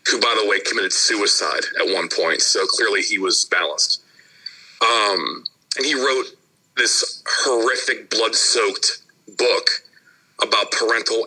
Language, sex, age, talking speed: English, male, 40-59, 130 wpm